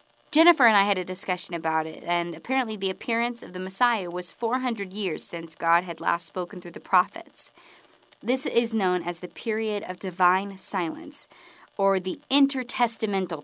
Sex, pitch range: female, 180-240 Hz